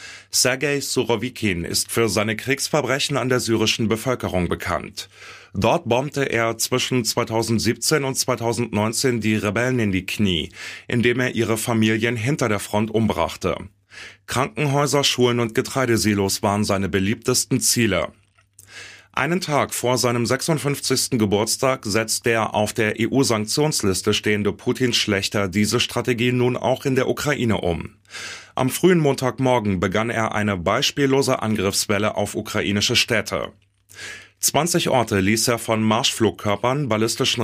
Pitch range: 105-130 Hz